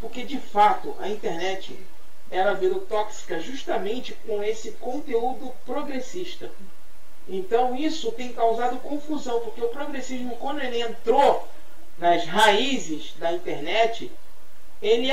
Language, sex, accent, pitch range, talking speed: Portuguese, male, Brazilian, 230-330 Hz, 115 wpm